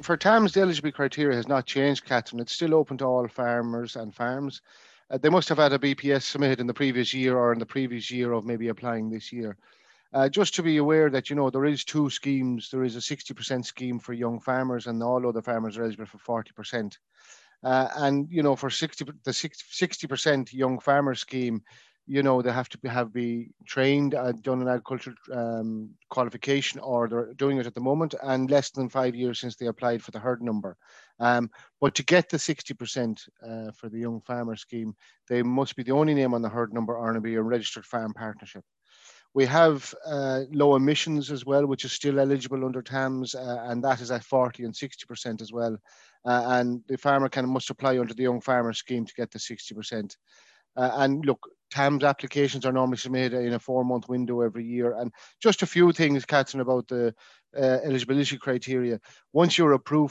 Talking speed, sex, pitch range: 210 wpm, male, 120-140 Hz